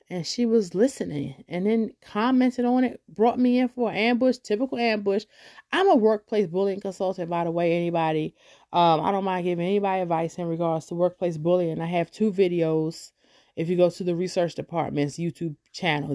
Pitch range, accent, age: 155-200 Hz, American, 30-49